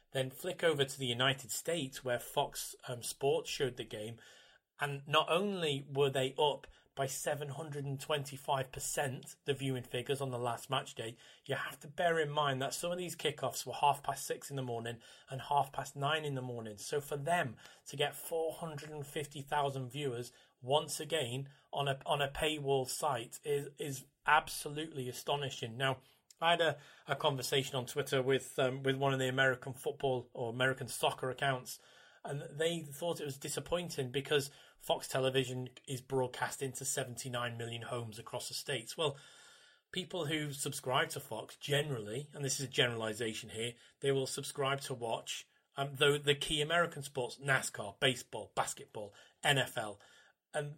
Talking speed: 165 wpm